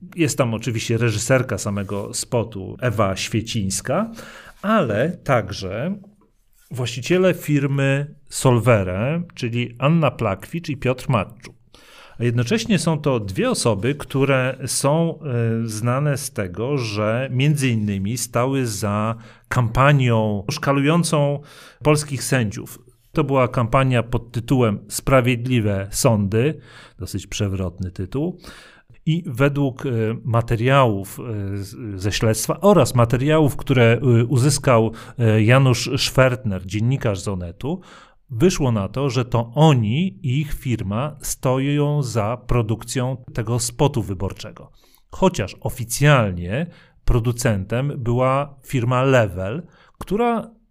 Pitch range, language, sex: 115-145 Hz, Polish, male